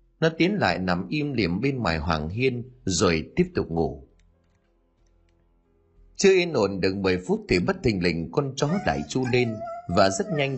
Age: 30-49